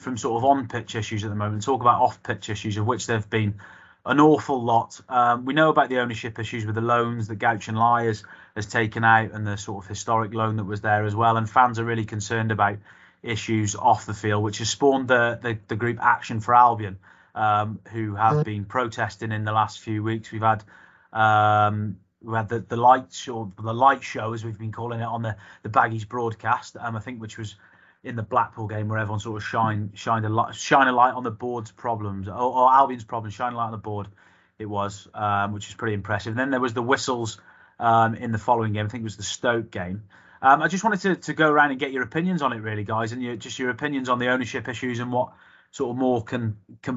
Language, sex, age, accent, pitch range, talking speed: English, male, 30-49, British, 110-125 Hz, 245 wpm